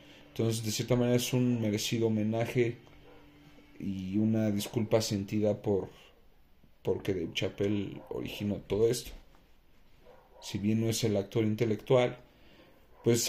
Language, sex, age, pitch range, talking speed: Spanish, male, 40-59, 100-120 Hz, 115 wpm